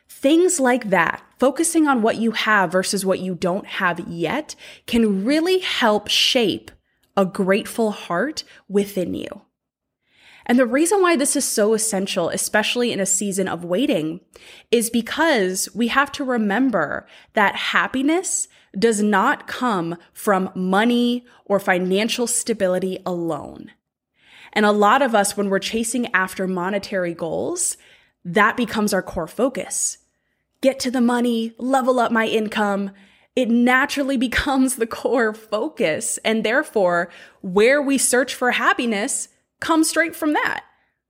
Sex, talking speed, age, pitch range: female, 140 wpm, 20-39, 190-260 Hz